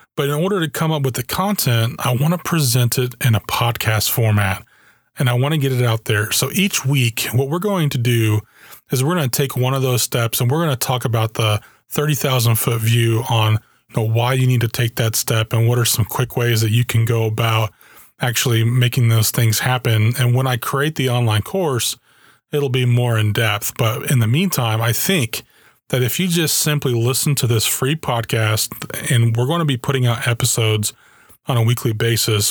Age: 30-49